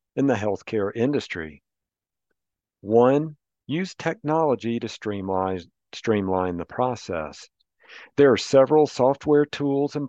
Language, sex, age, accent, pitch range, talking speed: English, male, 50-69, American, 105-145 Hz, 100 wpm